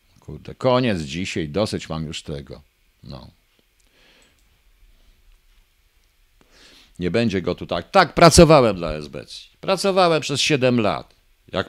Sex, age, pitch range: male, 50-69, 80-135 Hz